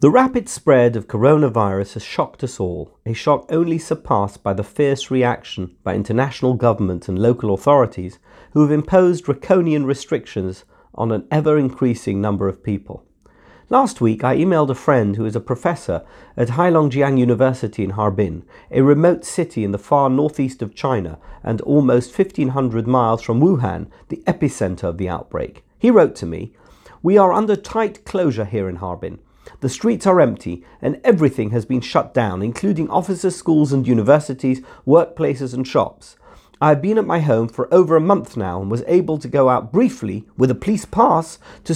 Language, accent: English, British